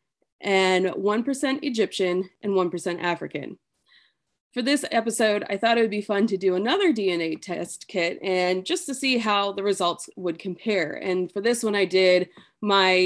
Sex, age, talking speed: female, 20-39, 170 wpm